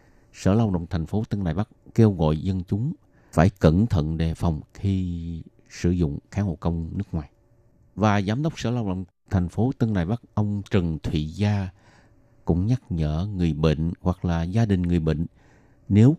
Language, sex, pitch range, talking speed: Vietnamese, male, 85-110 Hz, 195 wpm